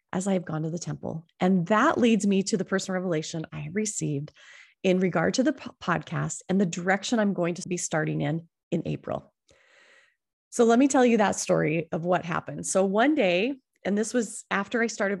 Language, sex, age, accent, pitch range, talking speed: English, female, 30-49, American, 170-225 Hz, 215 wpm